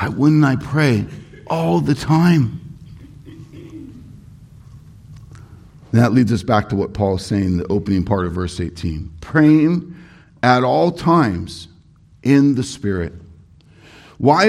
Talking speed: 130 wpm